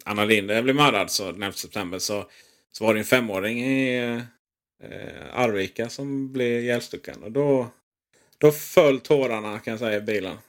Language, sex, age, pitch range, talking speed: Swedish, male, 30-49, 110-150 Hz, 165 wpm